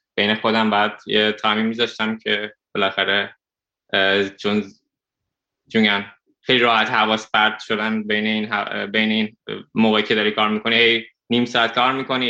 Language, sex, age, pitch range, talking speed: Persian, male, 20-39, 105-115 Hz, 140 wpm